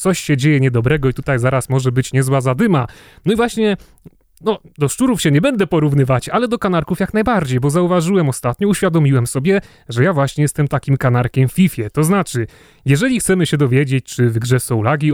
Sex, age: male, 30-49